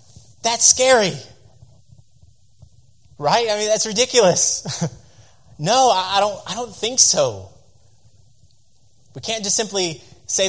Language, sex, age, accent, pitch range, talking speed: English, male, 30-49, American, 115-145 Hz, 115 wpm